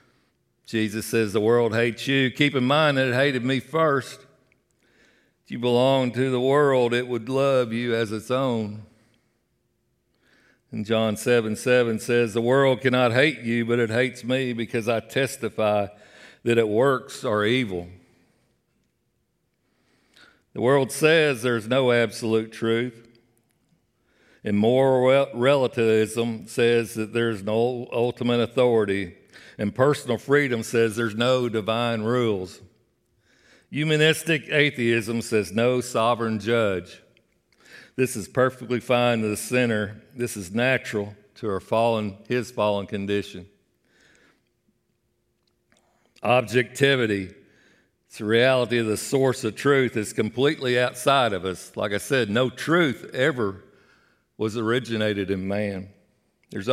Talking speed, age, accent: 125 wpm, 60-79, American